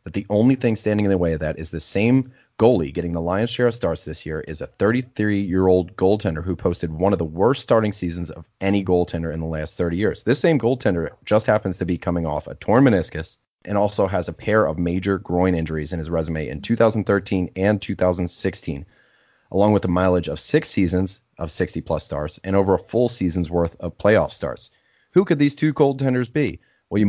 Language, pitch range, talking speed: English, 85-110 Hz, 215 wpm